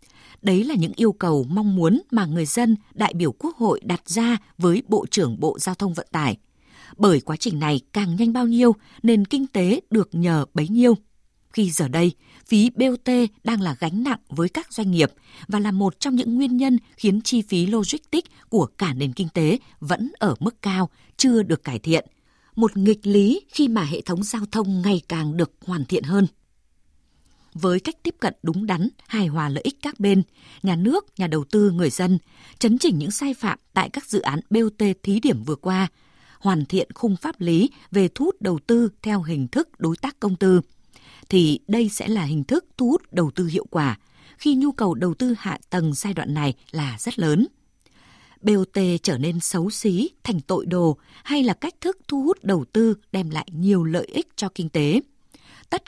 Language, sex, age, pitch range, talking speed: Vietnamese, female, 20-39, 165-230 Hz, 205 wpm